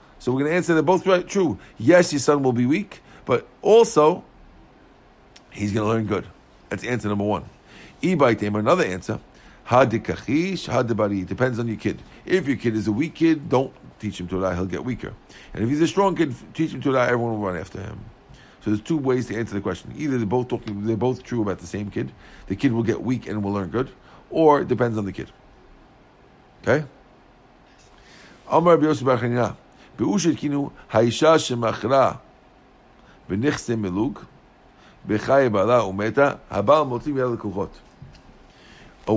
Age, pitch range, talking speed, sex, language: 50-69, 105-135 Hz, 150 wpm, male, English